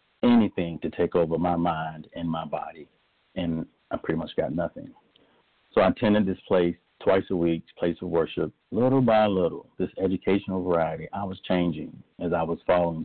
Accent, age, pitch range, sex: American, 40-59, 85-105 Hz, male